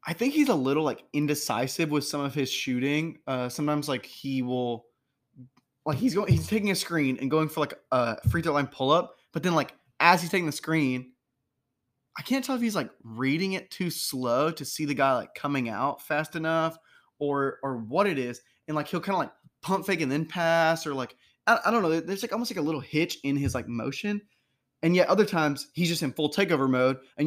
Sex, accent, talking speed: male, American, 230 wpm